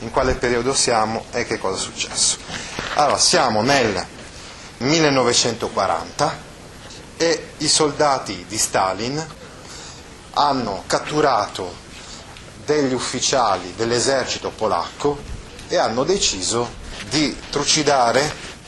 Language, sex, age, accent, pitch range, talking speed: Italian, male, 30-49, native, 105-150 Hz, 95 wpm